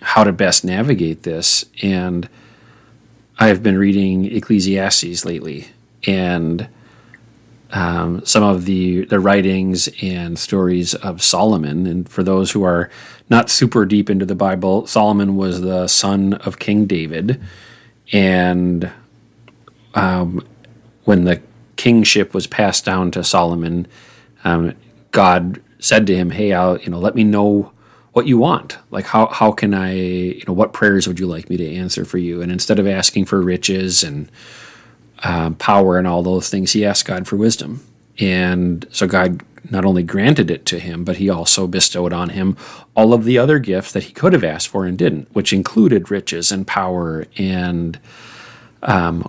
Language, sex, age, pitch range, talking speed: English, male, 30-49, 90-100 Hz, 165 wpm